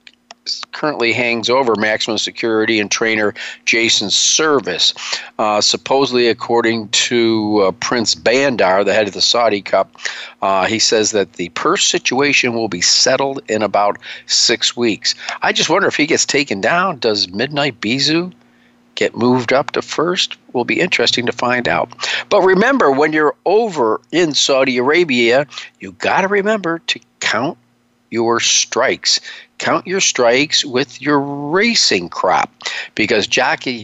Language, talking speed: English, 145 wpm